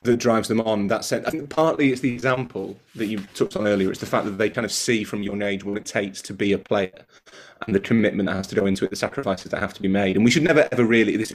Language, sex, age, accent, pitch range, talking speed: English, male, 30-49, British, 100-110 Hz, 305 wpm